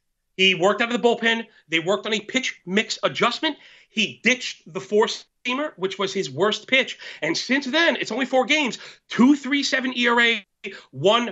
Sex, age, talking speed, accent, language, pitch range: male, 30-49, 180 wpm, American, English, 205-270 Hz